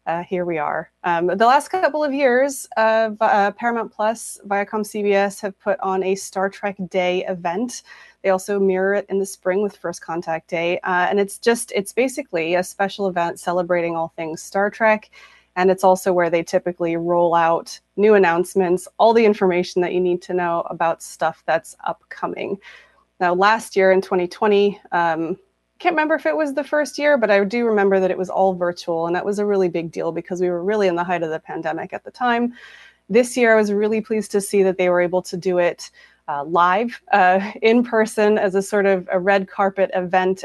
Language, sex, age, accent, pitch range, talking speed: English, female, 20-39, American, 180-225 Hz, 210 wpm